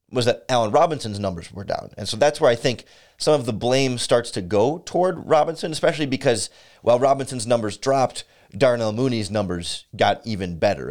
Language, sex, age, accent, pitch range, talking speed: English, male, 30-49, American, 105-135 Hz, 185 wpm